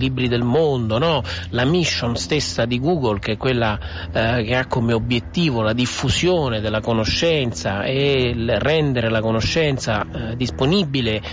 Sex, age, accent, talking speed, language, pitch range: male, 40-59, native, 150 wpm, Italian, 110-140 Hz